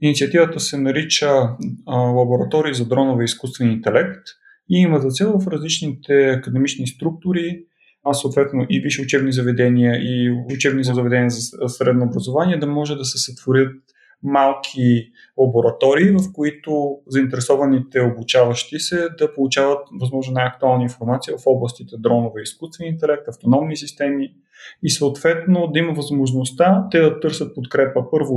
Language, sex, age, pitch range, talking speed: Bulgarian, male, 30-49, 130-160 Hz, 135 wpm